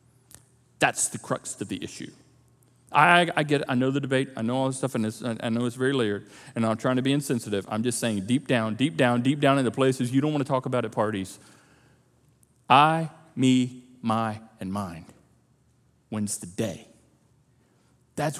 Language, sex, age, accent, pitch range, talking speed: English, male, 40-59, American, 125-205 Hz, 195 wpm